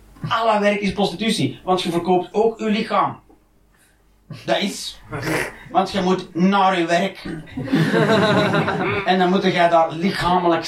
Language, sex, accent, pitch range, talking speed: Dutch, male, Dutch, 195-290 Hz, 135 wpm